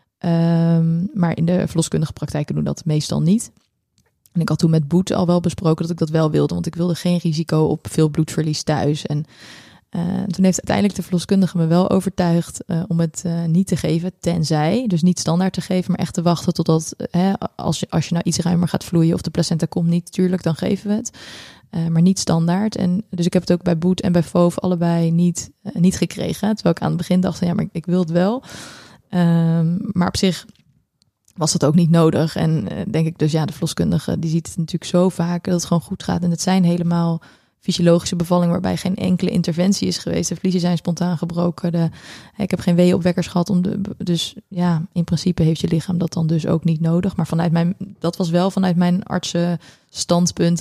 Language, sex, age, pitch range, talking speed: Dutch, female, 20-39, 165-185 Hz, 225 wpm